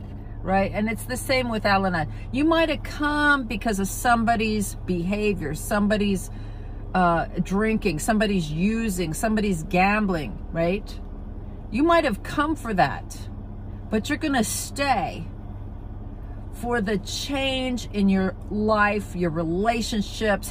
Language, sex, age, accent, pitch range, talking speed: English, female, 50-69, American, 145-225 Hz, 115 wpm